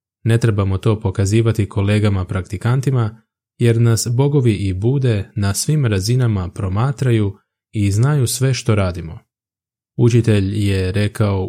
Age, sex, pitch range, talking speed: 20-39, male, 100-120 Hz, 115 wpm